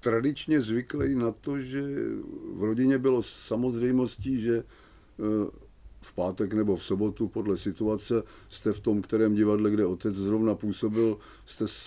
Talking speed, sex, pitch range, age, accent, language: 135 wpm, male, 100-120 Hz, 50-69, native, Czech